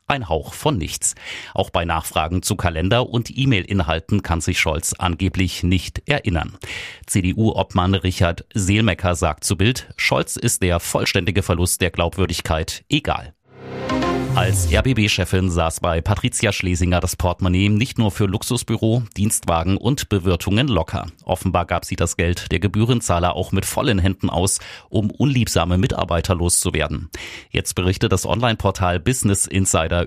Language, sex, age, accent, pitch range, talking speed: German, male, 30-49, German, 85-105 Hz, 140 wpm